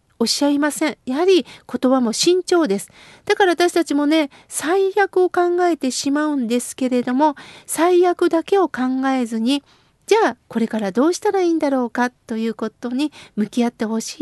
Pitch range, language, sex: 250-340 Hz, Japanese, female